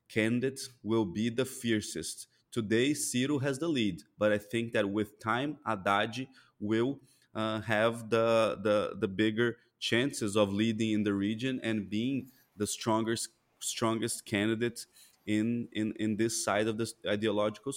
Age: 20-39